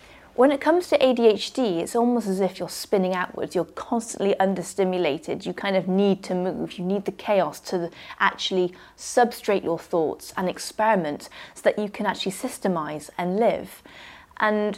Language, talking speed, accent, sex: English, 165 wpm, British, female